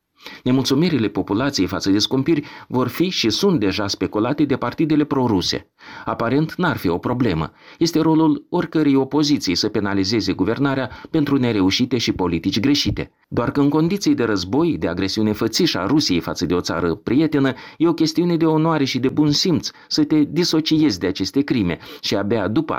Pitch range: 105-150 Hz